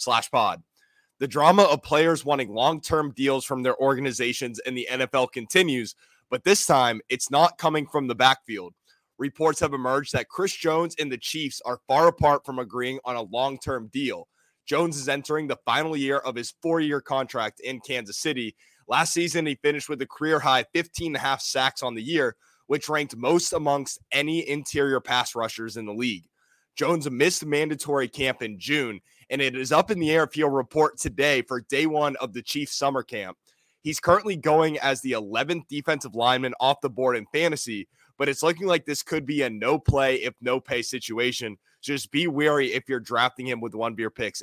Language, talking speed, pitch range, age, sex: English, 195 wpm, 125-155 Hz, 20-39, male